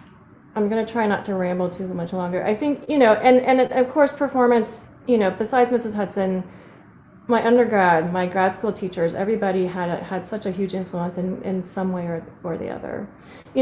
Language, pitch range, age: English, 185-220 Hz, 30-49